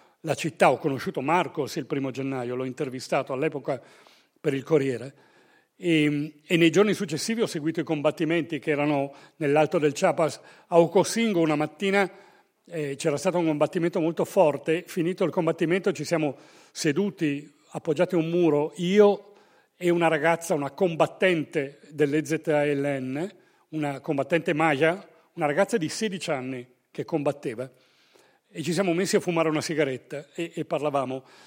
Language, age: Italian, 40-59